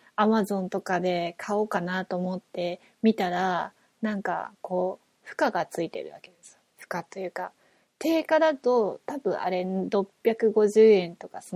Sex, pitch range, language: female, 185-225 Hz, Japanese